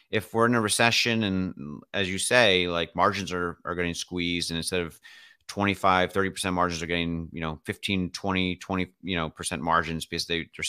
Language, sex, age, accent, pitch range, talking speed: English, male, 30-49, American, 85-105 Hz, 195 wpm